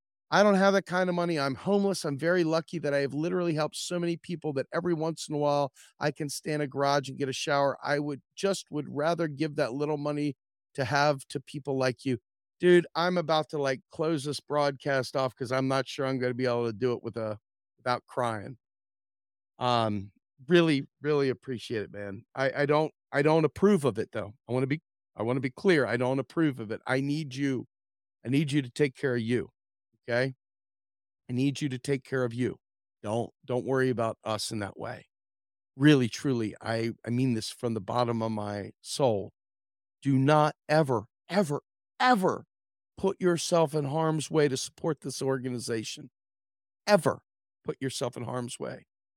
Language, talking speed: English, 200 wpm